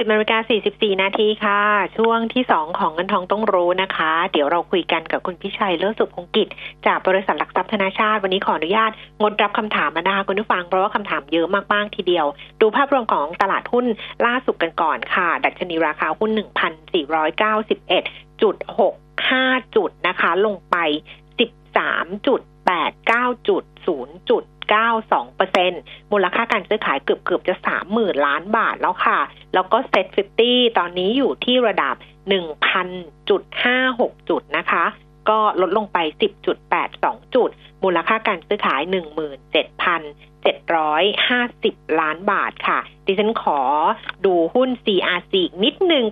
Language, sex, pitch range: Thai, female, 180-230 Hz